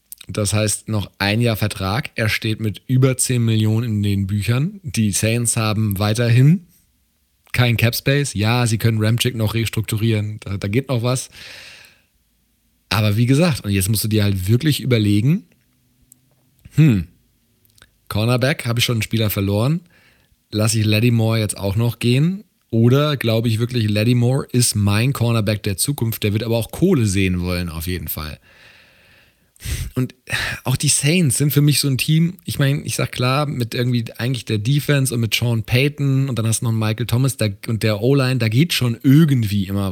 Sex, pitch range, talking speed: male, 110-135 Hz, 175 wpm